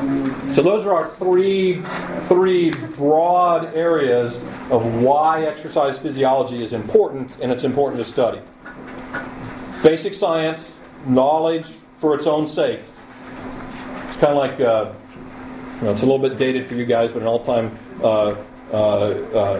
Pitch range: 120-155 Hz